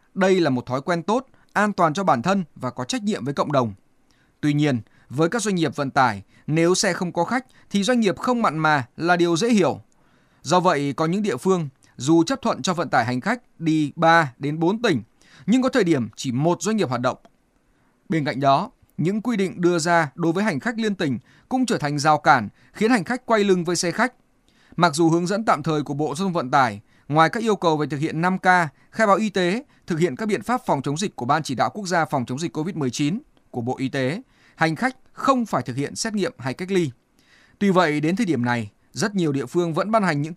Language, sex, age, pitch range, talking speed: Vietnamese, male, 20-39, 145-205 Hz, 250 wpm